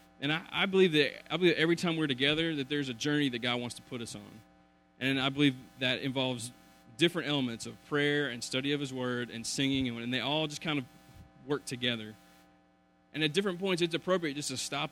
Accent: American